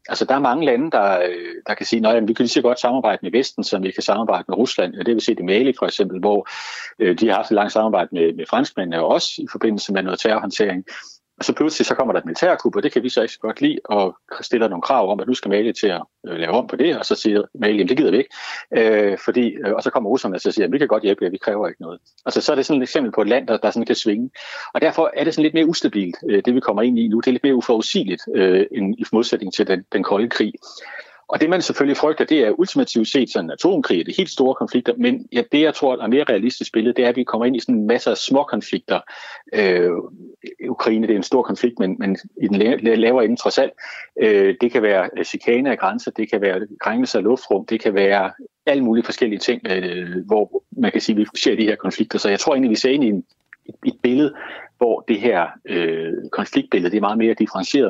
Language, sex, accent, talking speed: Danish, male, native, 265 wpm